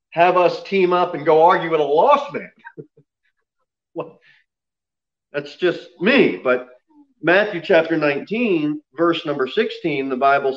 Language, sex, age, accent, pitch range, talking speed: English, male, 40-59, American, 140-230 Hz, 135 wpm